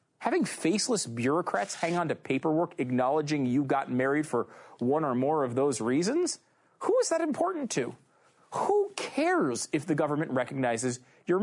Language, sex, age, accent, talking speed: English, male, 30-49, American, 155 wpm